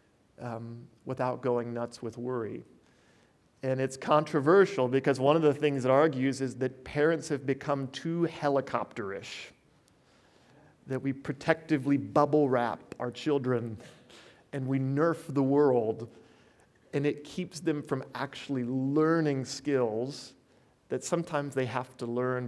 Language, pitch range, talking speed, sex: English, 120-140 Hz, 130 wpm, male